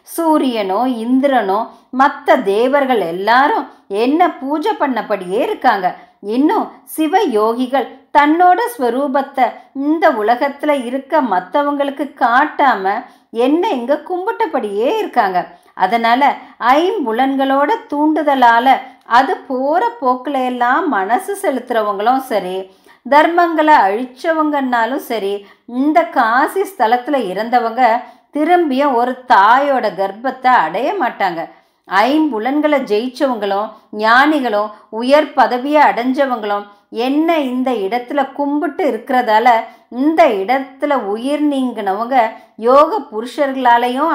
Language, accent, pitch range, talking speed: Tamil, native, 235-305 Hz, 85 wpm